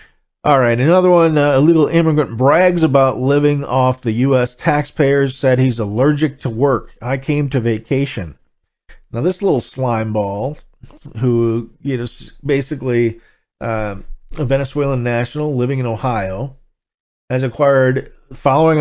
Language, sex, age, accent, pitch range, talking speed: English, male, 40-59, American, 115-145 Hz, 135 wpm